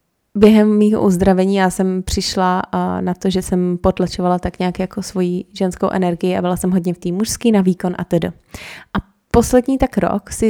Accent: native